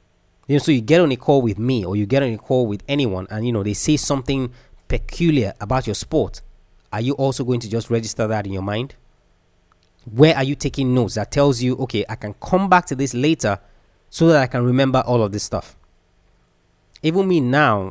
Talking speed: 220 wpm